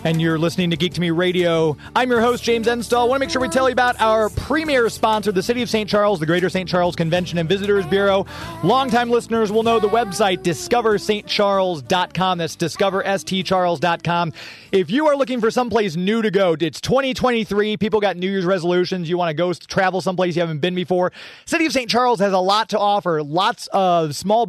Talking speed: 210 wpm